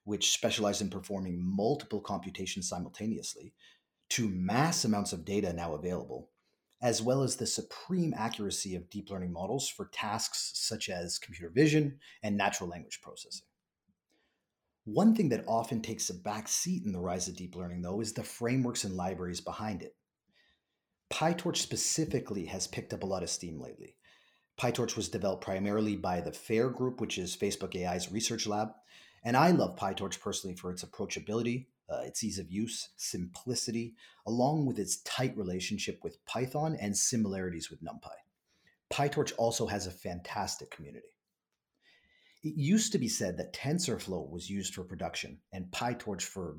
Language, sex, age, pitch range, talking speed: English, male, 30-49, 90-120 Hz, 160 wpm